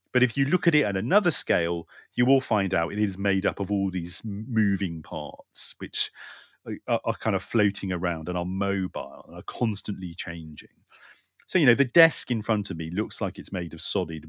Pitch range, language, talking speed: 85-110 Hz, English, 215 wpm